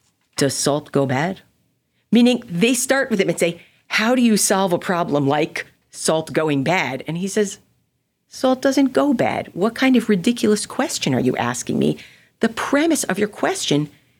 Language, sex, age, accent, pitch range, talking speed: English, female, 40-59, American, 145-215 Hz, 180 wpm